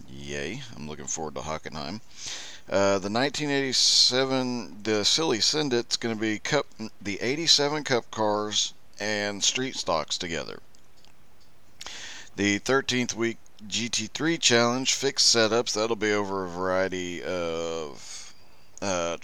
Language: English